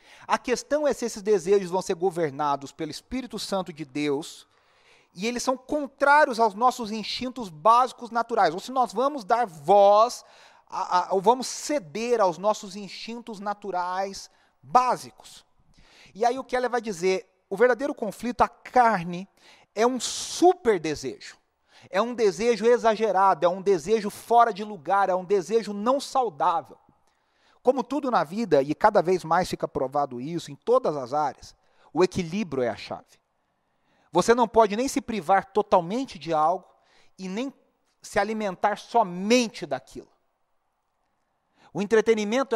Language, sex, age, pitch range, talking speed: Portuguese, male, 40-59, 190-240 Hz, 150 wpm